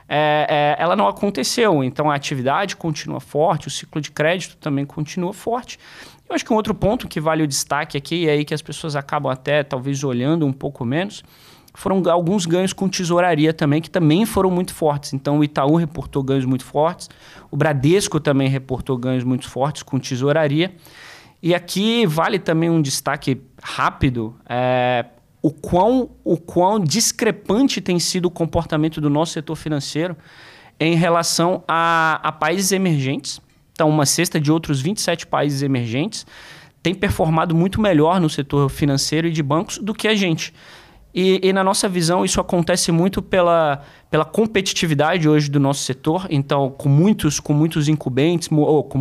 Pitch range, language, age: 145-175 Hz, Portuguese, 20-39